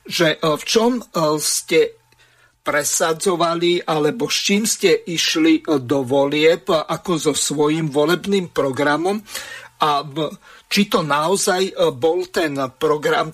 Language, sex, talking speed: Slovak, male, 110 wpm